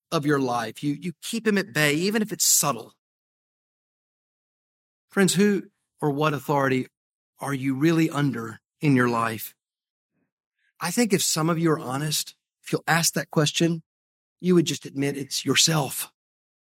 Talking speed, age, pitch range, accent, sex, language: 160 wpm, 40-59, 135-195 Hz, American, male, English